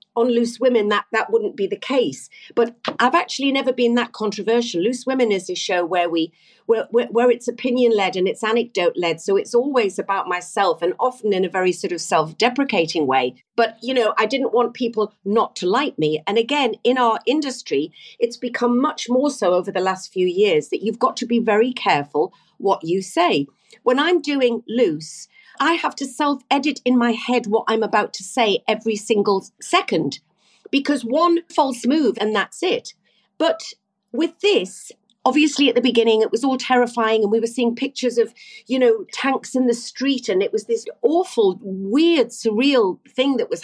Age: 40-59